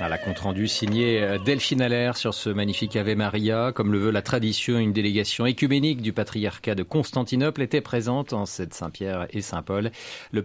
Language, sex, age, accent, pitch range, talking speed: French, male, 40-59, French, 105-145 Hz, 180 wpm